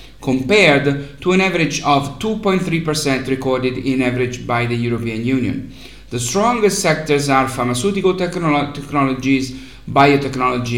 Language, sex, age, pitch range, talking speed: English, male, 50-69, 125-160 Hz, 110 wpm